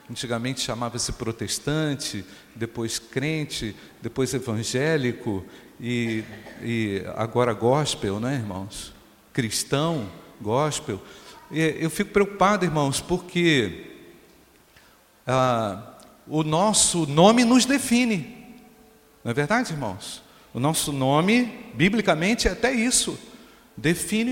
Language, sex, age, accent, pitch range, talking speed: Portuguese, male, 50-69, Brazilian, 145-220 Hz, 95 wpm